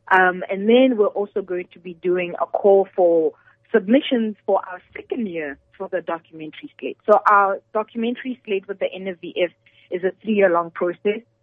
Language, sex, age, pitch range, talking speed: English, female, 20-39, 175-210 Hz, 180 wpm